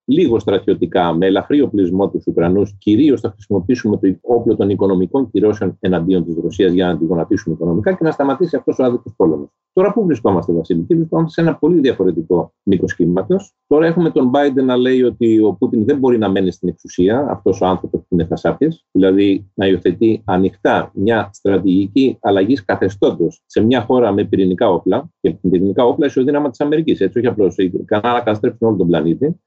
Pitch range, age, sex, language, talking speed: 100-155 Hz, 40-59, male, Greek, 180 wpm